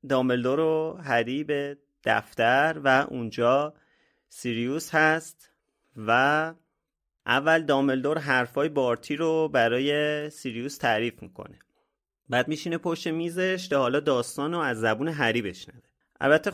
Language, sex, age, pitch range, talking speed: Persian, male, 30-49, 115-155 Hz, 110 wpm